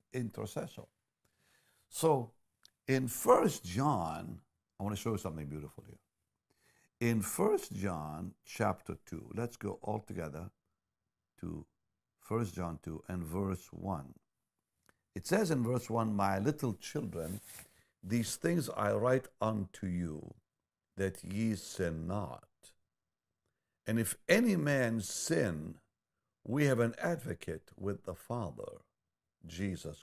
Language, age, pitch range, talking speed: English, 60-79, 95-125 Hz, 120 wpm